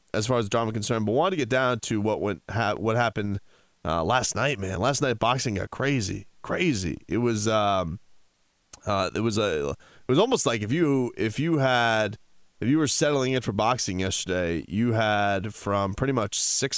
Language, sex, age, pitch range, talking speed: English, male, 30-49, 100-120 Hz, 200 wpm